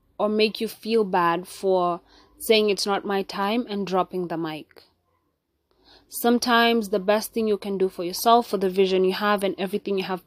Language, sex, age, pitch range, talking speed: English, female, 20-39, 185-225 Hz, 195 wpm